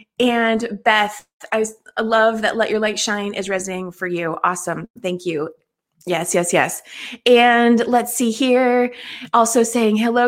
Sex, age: female, 20-39